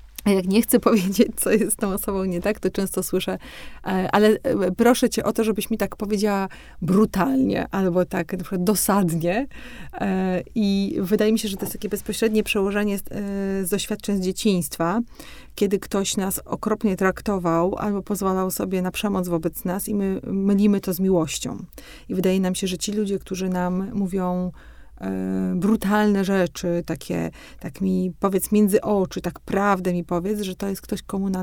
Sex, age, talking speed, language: female, 30-49, 170 wpm, Polish